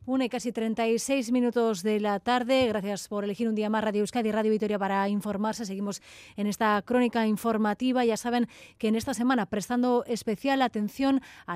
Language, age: Spanish, 30-49